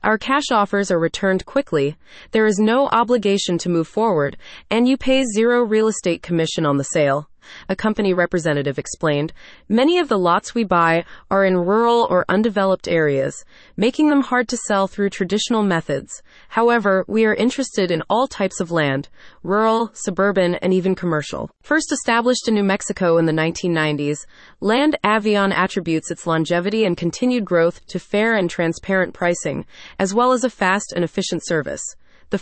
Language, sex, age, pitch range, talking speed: English, female, 30-49, 170-225 Hz, 170 wpm